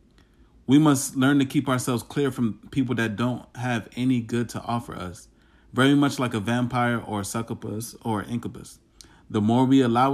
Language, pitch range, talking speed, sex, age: English, 110-130 Hz, 190 wpm, male, 30-49